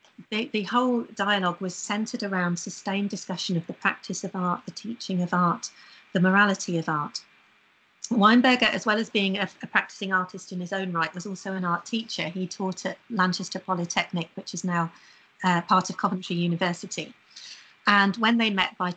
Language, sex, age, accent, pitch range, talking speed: English, female, 40-59, British, 180-205 Hz, 185 wpm